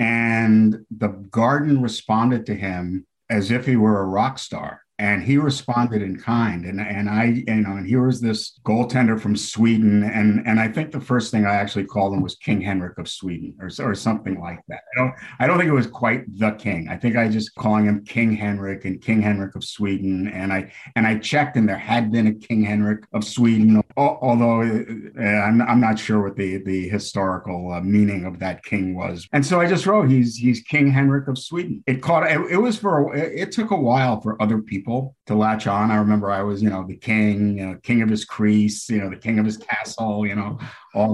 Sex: male